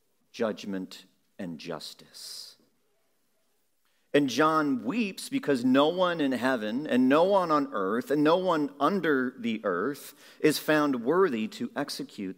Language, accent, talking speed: English, American, 130 wpm